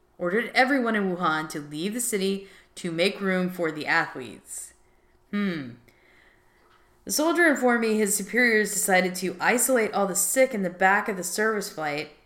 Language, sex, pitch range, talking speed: English, female, 160-210 Hz, 165 wpm